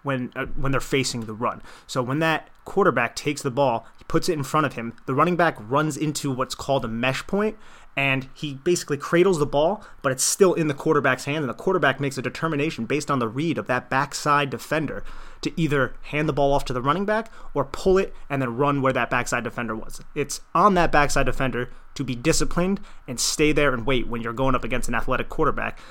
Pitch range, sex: 120-145 Hz, male